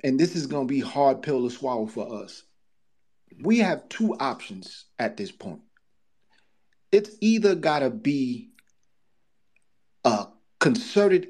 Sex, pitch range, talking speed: male, 140-220 Hz, 140 wpm